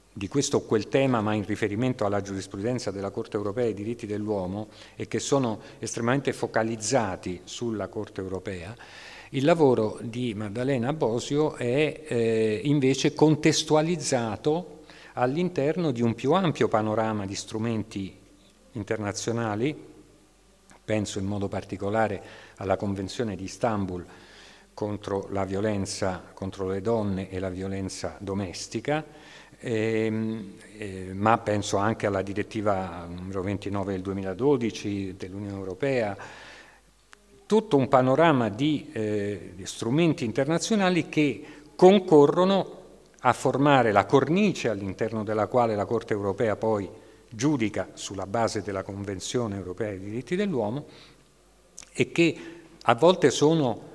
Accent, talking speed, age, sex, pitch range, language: native, 120 wpm, 50-69, male, 100-135 Hz, Italian